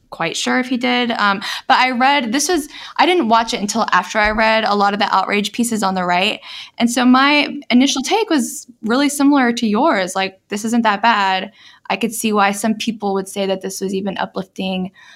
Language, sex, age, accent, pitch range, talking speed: English, female, 10-29, American, 180-230 Hz, 220 wpm